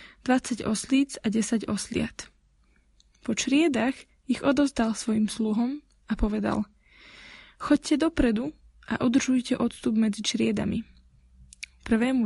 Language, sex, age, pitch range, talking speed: Slovak, female, 20-39, 215-255 Hz, 110 wpm